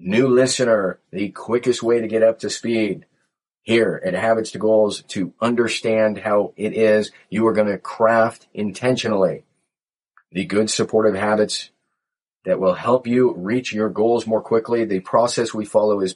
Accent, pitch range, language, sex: American, 105-115 Hz, English, male